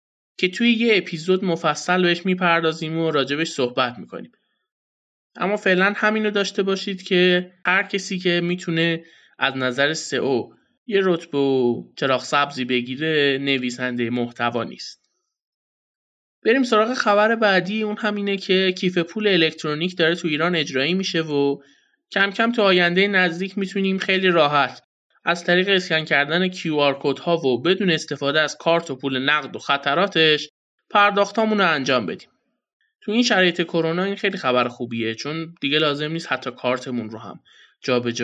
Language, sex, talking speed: Persian, male, 150 wpm